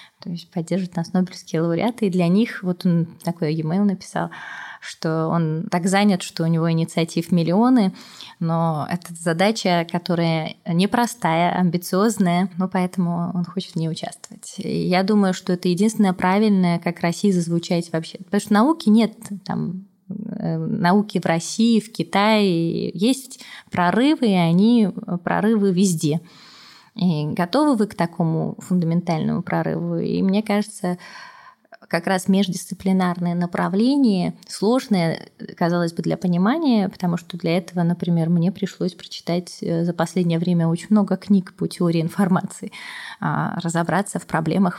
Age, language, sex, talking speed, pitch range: 20-39, Russian, female, 135 wpm, 170-200 Hz